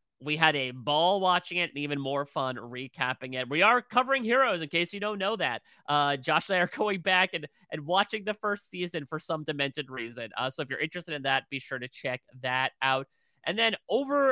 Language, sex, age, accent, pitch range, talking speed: English, male, 30-49, American, 135-190 Hz, 230 wpm